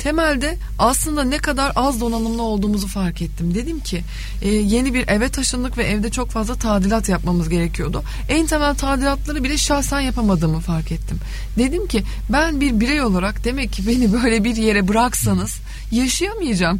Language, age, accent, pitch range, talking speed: Turkish, 30-49, native, 190-260 Hz, 160 wpm